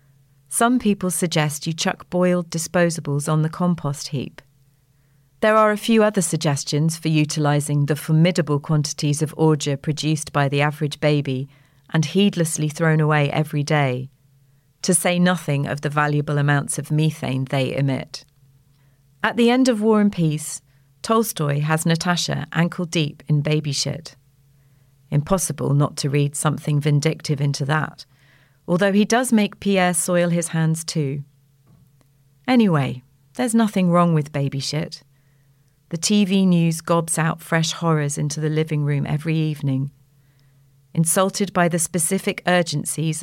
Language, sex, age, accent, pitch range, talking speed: English, female, 40-59, British, 140-170 Hz, 140 wpm